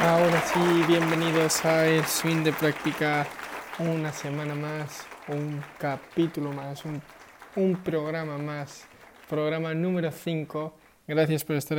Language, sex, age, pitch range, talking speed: Spanish, male, 20-39, 145-165 Hz, 120 wpm